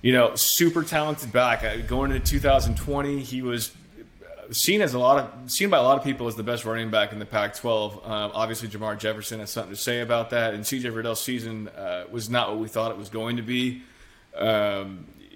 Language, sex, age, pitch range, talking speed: English, male, 20-39, 110-120 Hz, 215 wpm